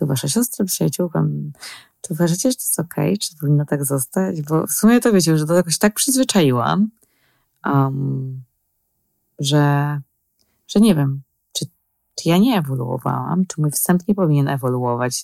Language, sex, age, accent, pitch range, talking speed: Polish, female, 20-39, native, 140-180 Hz, 155 wpm